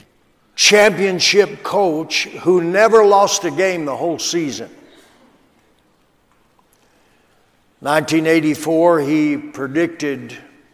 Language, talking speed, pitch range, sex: English, 75 wpm, 145-195 Hz, male